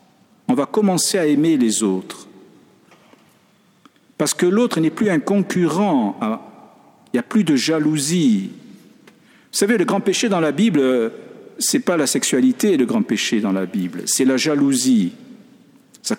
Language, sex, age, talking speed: French, male, 50-69, 160 wpm